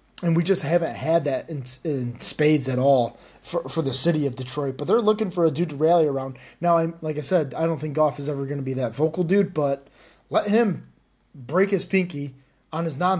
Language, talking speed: English, 235 wpm